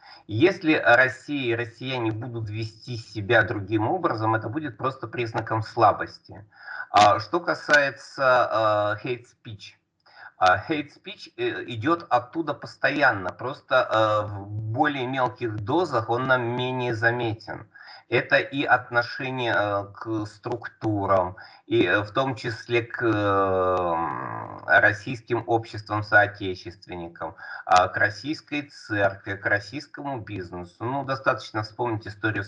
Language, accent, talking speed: Russian, native, 100 wpm